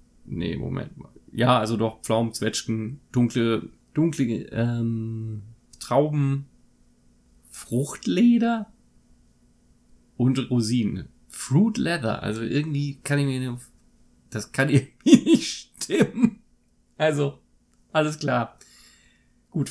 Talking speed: 95 wpm